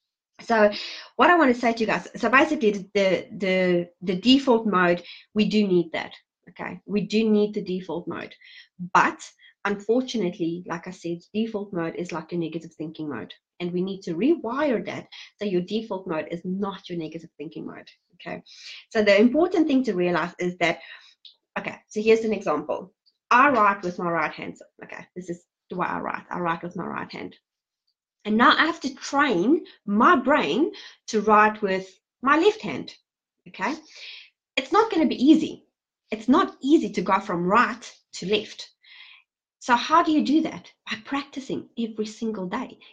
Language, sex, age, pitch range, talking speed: English, female, 30-49, 185-265 Hz, 180 wpm